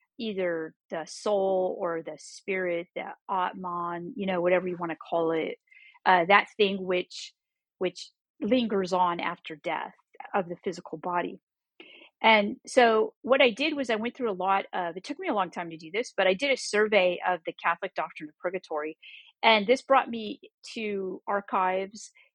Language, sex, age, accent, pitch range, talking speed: English, female, 40-59, American, 180-220 Hz, 180 wpm